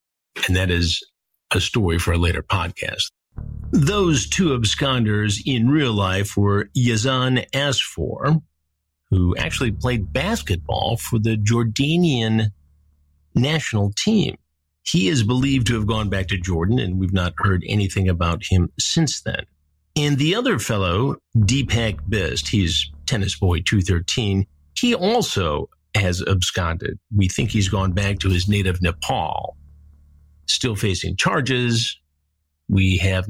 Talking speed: 130 wpm